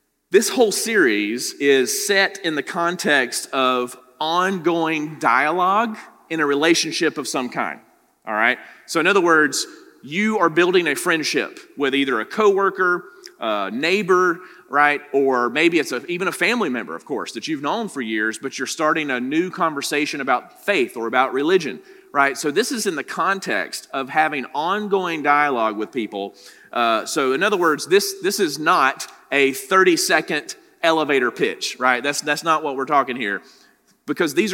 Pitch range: 135-185 Hz